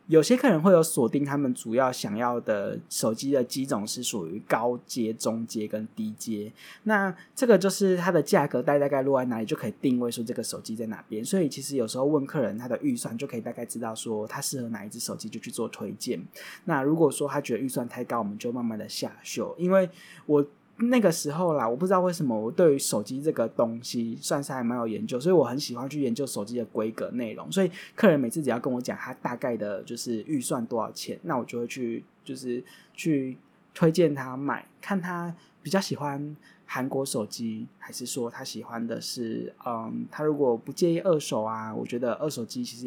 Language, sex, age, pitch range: Chinese, male, 20-39, 120-175 Hz